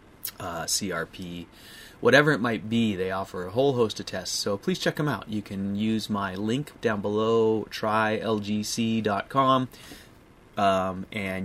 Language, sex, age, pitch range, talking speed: English, male, 30-49, 95-115 Hz, 145 wpm